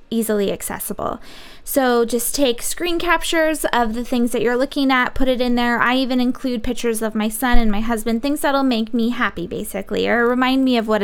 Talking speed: 210 wpm